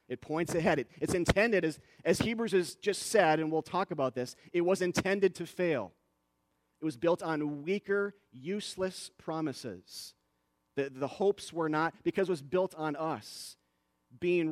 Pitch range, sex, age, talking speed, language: 105-160 Hz, male, 30-49, 165 wpm, English